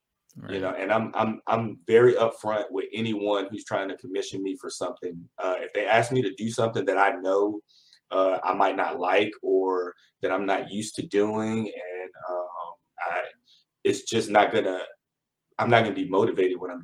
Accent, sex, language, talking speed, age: American, male, English, 190 wpm, 30-49